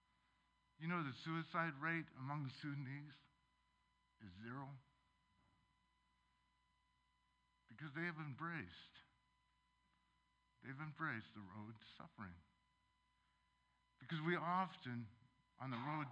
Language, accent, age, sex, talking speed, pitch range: English, American, 60-79, male, 95 wpm, 95-145 Hz